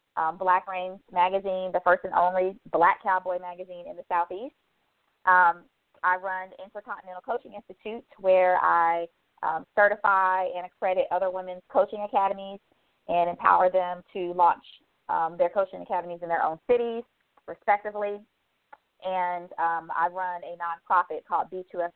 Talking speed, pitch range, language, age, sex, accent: 140 wpm, 170-200 Hz, English, 20-39, female, American